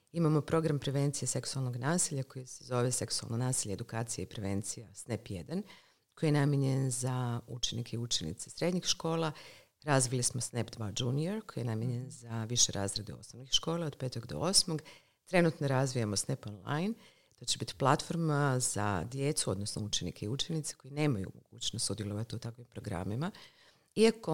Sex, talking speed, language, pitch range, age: female, 155 wpm, Croatian, 120-160 Hz, 50-69